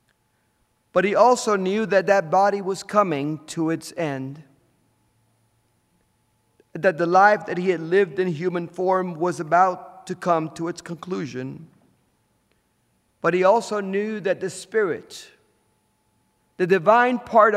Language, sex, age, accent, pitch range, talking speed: English, male, 50-69, American, 125-190 Hz, 135 wpm